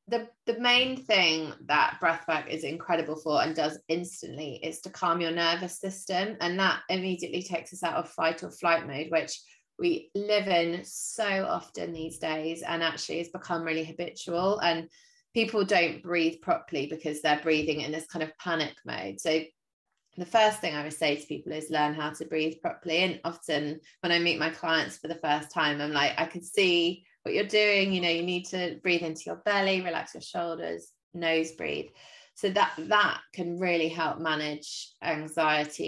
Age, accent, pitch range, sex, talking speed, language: 20-39, British, 160-180 Hz, female, 190 wpm, English